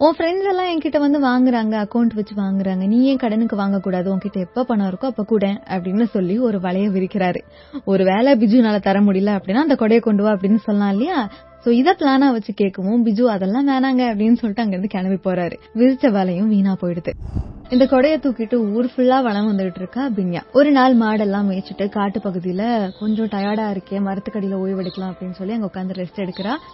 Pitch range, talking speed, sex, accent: 195-245 Hz, 170 wpm, female, native